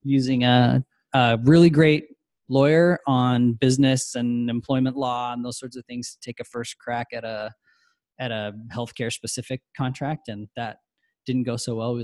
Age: 20-39